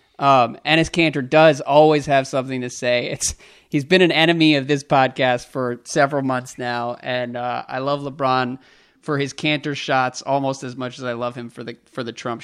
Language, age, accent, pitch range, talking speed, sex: English, 30-49, American, 130-155 Hz, 205 wpm, male